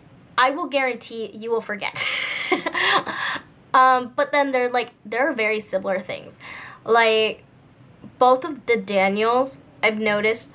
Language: English